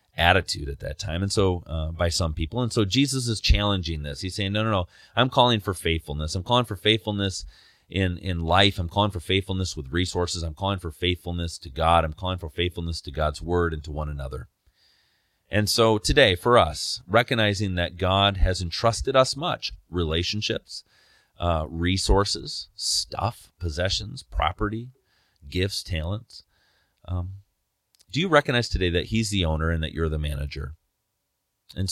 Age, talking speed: 30-49, 170 wpm